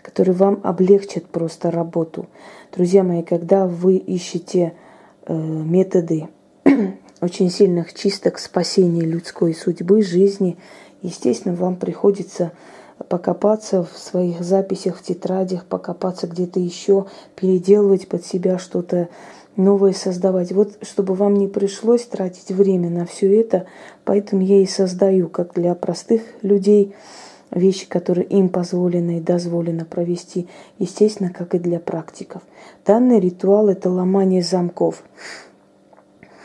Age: 20-39